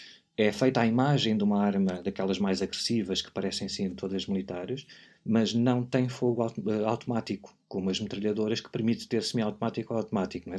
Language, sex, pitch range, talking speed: Portuguese, male, 105-125 Hz, 165 wpm